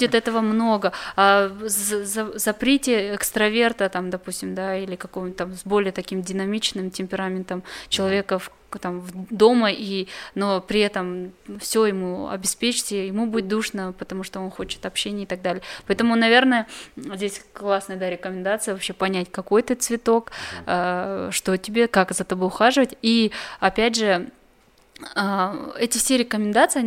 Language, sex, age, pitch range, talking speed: Russian, female, 20-39, 190-220 Hz, 135 wpm